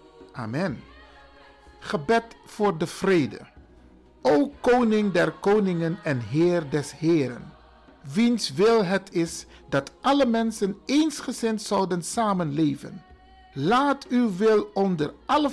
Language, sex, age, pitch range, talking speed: Dutch, male, 50-69, 160-225 Hz, 110 wpm